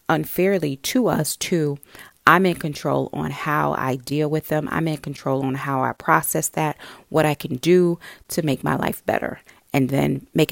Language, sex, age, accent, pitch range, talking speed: English, female, 30-49, American, 150-190 Hz, 190 wpm